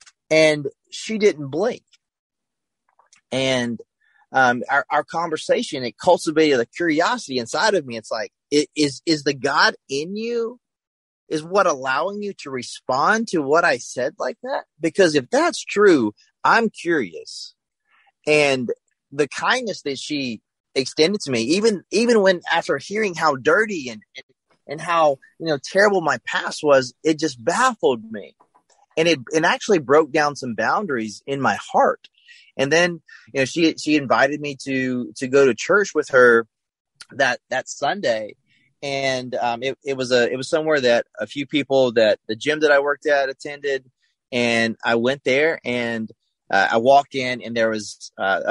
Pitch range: 125-175 Hz